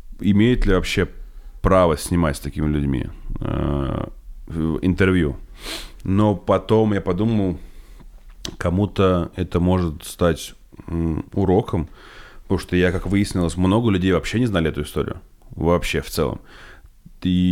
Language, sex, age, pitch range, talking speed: Russian, male, 30-49, 85-100 Hz, 125 wpm